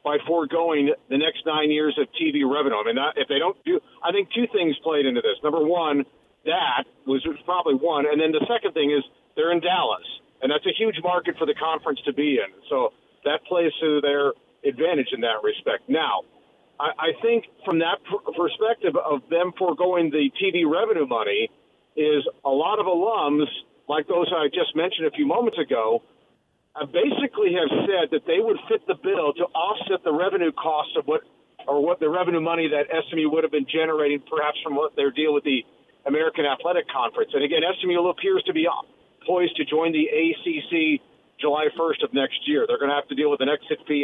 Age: 50-69